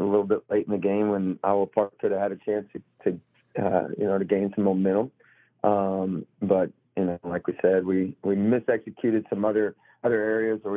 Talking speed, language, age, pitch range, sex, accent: 215 wpm, English, 40-59, 95-105 Hz, male, American